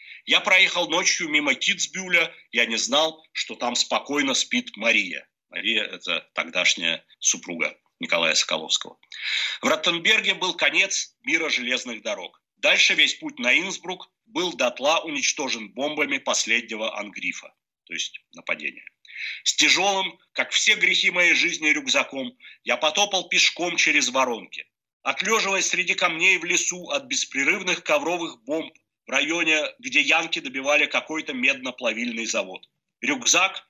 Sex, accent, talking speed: male, native, 130 wpm